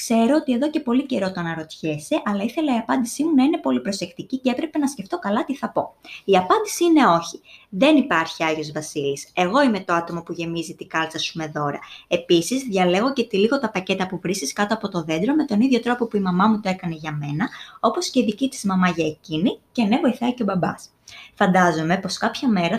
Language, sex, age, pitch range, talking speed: Greek, female, 20-39, 170-250 Hz, 225 wpm